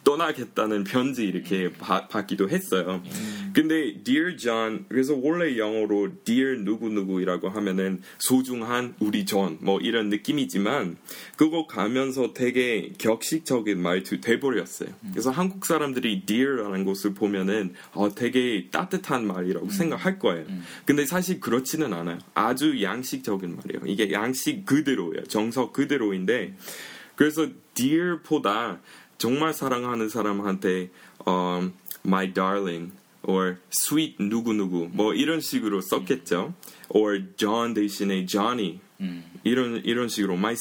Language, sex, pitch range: Korean, male, 95-150 Hz